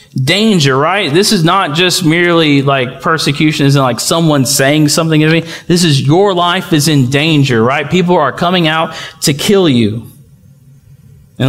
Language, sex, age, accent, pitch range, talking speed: English, male, 40-59, American, 140-175 Hz, 185 wpm